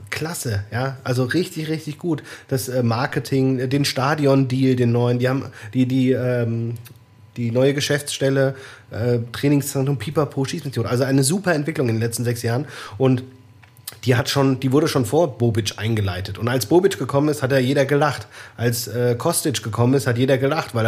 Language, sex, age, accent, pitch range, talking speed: German, male, 30-49, German, 115-140 Hz, 180 wpm